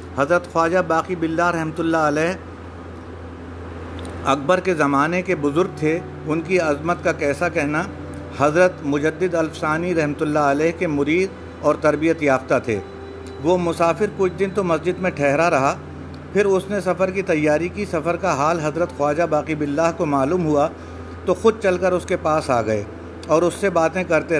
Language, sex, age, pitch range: Urdu, male, 50-69, 145-185 Hz